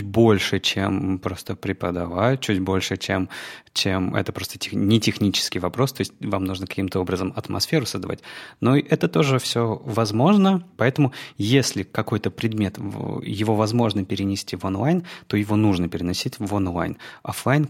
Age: 20-39